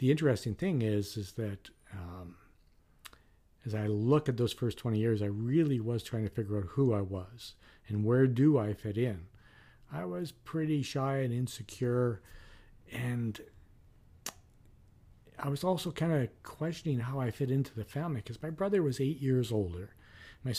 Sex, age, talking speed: male, 50-69, 170 wpm